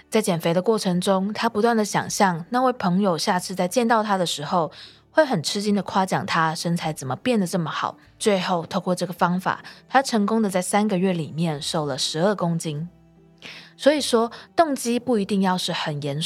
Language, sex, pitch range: Chinese, female, 165-215 Hz